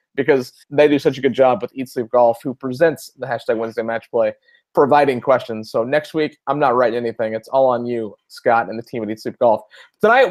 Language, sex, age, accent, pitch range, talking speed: English, male, 30-49, American, 130-170 Hz, 235 wpm